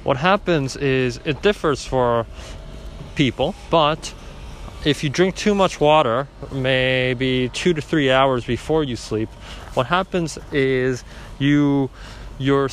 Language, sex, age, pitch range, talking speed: English, male, 20-39, 115-150 Hz, 125 wpm